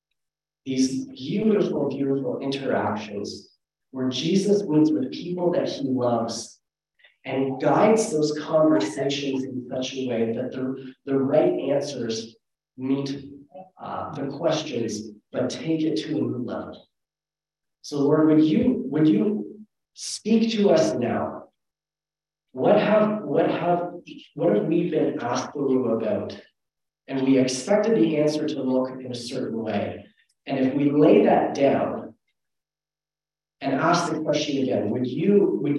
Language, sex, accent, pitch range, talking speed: English, male, American, 130-155 Hz, 135 wpm